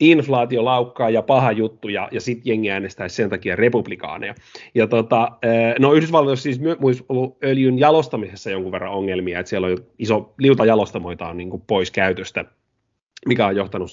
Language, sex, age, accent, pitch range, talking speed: Finnish, male, 30-49, native, 105-135 Hz, 165 wpm